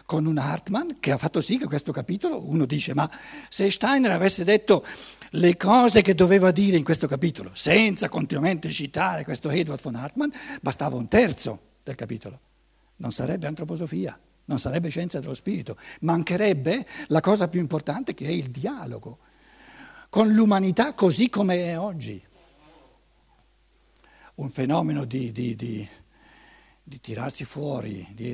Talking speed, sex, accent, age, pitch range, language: 145 wpm, male, native, 60-79, 120-180 Hz, Italian